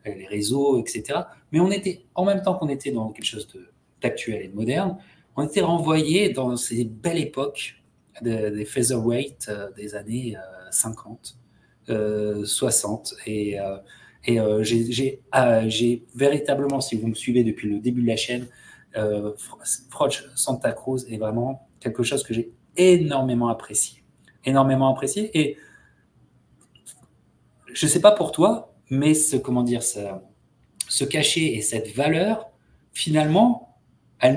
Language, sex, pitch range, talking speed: French, male, 110-150 Hz, 155 wpm